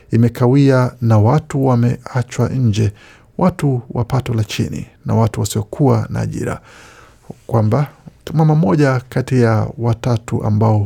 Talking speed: 115 wpm